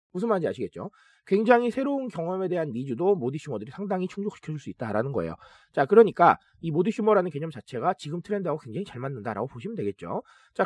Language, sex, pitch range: Korean, male, 135-220 Hz